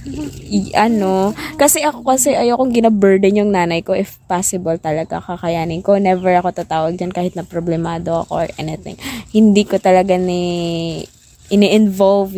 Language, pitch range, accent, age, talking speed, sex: Filipino, 175-215 Hz, native, 20-39, 160 wpm, female